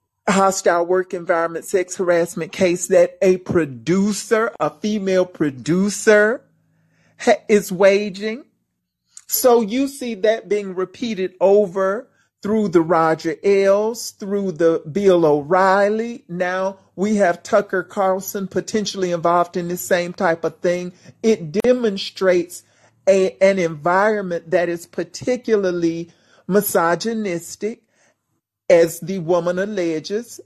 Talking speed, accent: 110 wpm, American